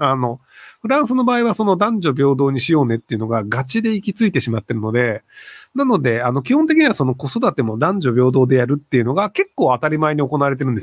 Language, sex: Japanese, male